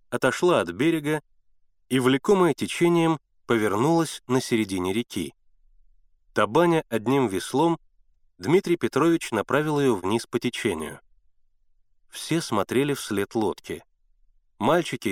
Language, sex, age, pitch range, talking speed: Russian, male, 30-49, 100-145 Hz, 100 wpm